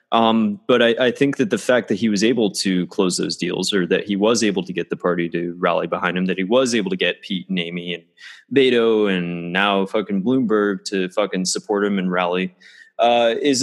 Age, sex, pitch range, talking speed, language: 20-39, male, 100-145 Hz, 230 wpm, English